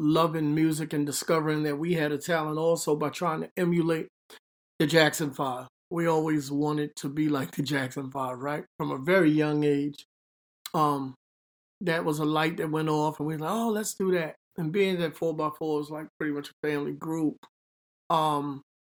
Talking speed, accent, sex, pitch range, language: 195 wpm, American, male, 150-180 Hz, English